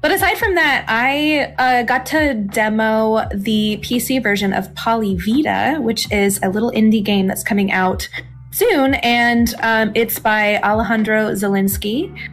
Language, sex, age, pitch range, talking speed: English, female, 20-39, 190-230 Hz, 150 wpm